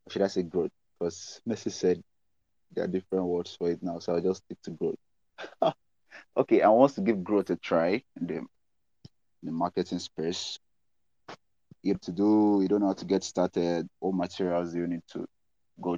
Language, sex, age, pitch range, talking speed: English, male, 30-49, 85-95 Hz, 195 wpm